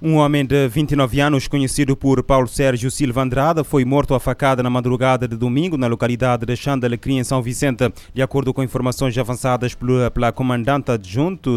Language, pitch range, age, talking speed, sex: Portuguese, 115-135 Hz, 20-39, 175 wpm, male